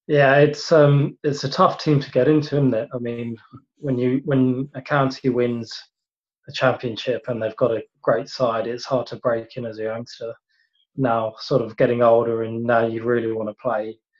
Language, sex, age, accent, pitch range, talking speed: English, male, 20-39, British, 115-130 Hz, 205 wpm